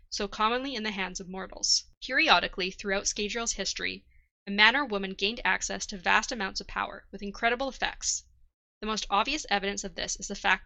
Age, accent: 20-39, American